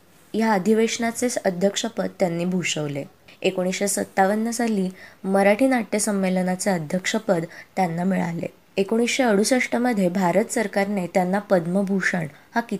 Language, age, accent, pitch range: Marathi, 20-39, native, 185-220 Hz